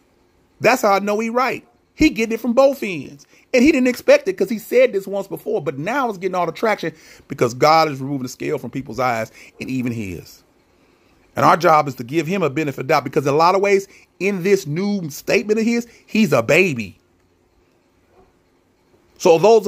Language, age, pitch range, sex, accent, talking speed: English, 30-49, 125-210 Hz, male, American, 215 wpm